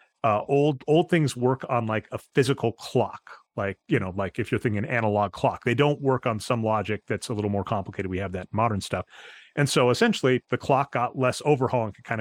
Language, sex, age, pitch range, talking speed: English, male, 30-49, 105-135 Hz, 225 wpm